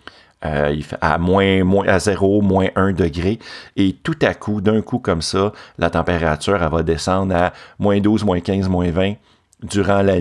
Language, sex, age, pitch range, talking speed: French, male, 40-59, 85-110 Hz, 180 wpm